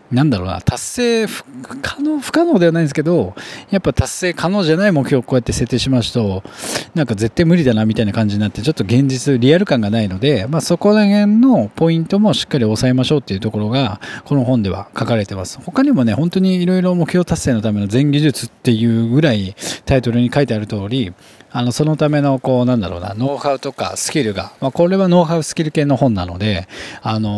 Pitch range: 110-170 Hz